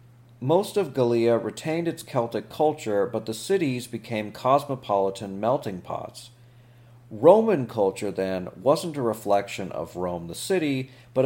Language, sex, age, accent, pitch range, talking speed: English, male, 40-59, American, 105-130 Hz, 135 wpm